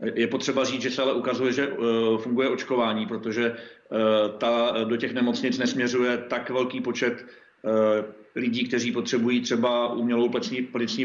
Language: Czech